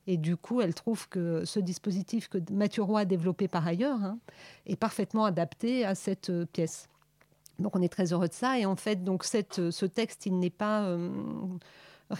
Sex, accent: female, French